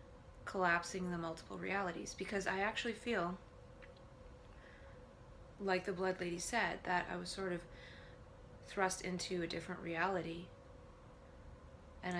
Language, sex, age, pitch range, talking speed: English, female, 20-39, 165-190 Hz, 120 wpm